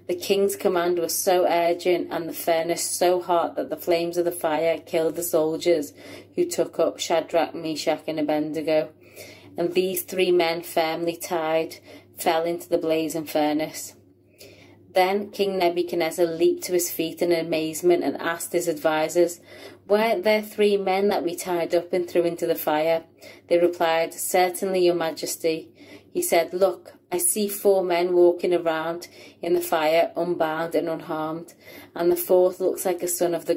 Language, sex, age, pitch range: English, female, 30-49, 165-180 Hz